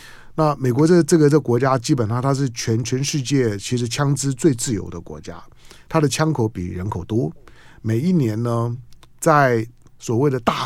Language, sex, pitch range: Chinese, male, 110-155 Hz